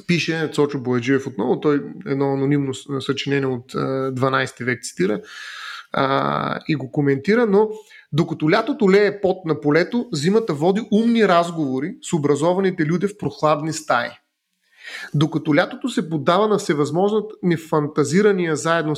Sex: male